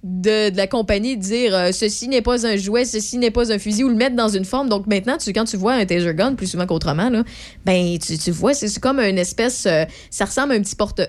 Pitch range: 185-245 Hz